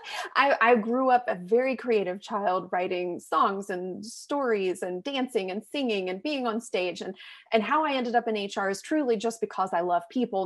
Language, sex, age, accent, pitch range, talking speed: English, female, 30-49, American, 200-260 Hz, 200 wpm